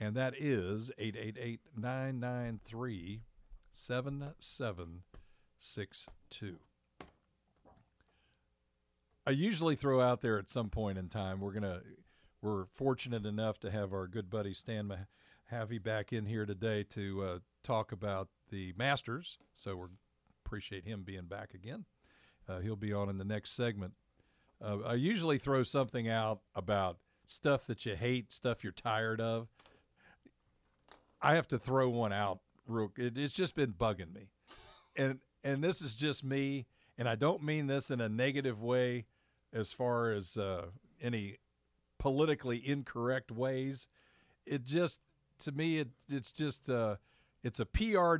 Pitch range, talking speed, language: 100-135 Hz, 145 wpm, English